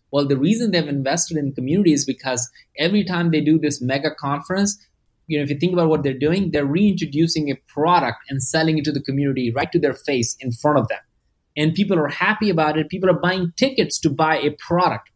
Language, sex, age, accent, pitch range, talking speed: English, male, 20-39, Indian, 135-165 Hz, 230 wpm